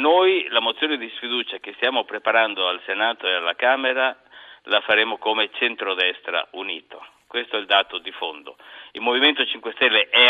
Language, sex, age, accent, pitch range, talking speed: Italian, male, 60-79, native, 110-160 Hz, 170 wpm